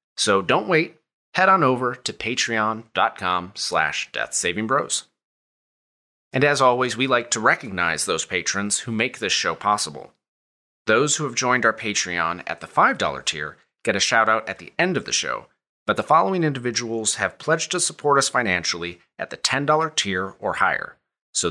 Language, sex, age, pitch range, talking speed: English, male, 30-49, 100-145 Hz, 165 wpm